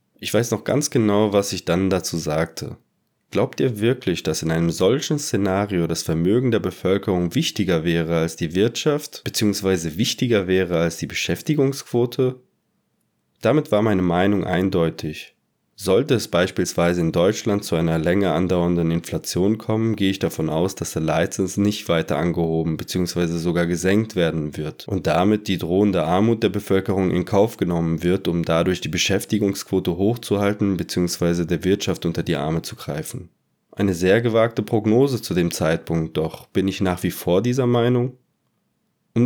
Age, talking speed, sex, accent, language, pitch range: 20-39, 160 wpm, male, German, German, 85-105 Hz